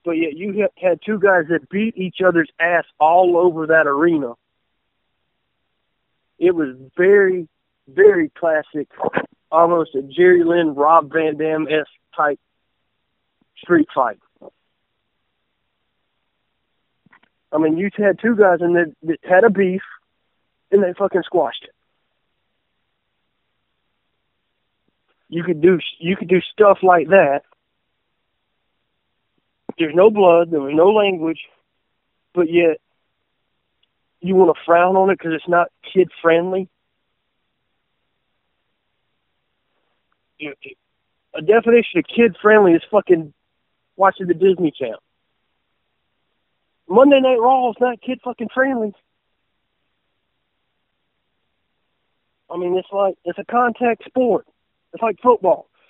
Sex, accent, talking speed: male, American, 115 wpm